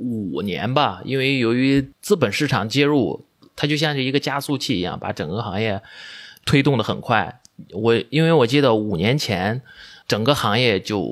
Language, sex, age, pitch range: Chinese, male, 30-49, 115-150 Hz